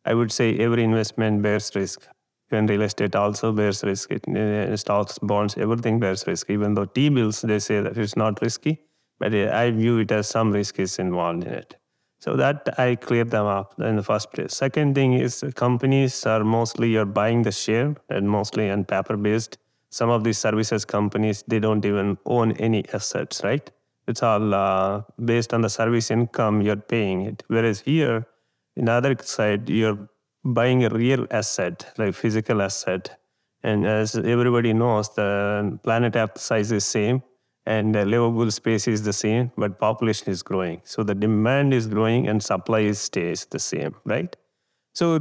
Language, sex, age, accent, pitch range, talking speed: English, male, 30-49, Indian, 105-120 Hz, 175 wpm